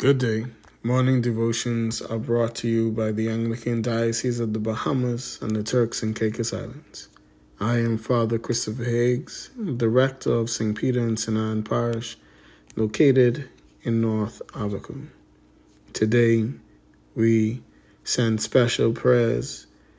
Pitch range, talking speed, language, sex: 105-120 Hz, 130 wpm, English, male